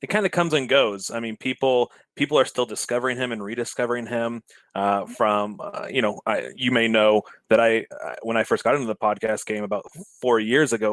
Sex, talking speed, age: male, 225 wpm, 20-39